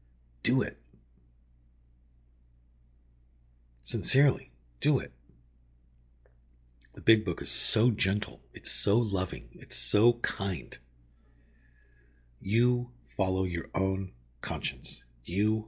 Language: English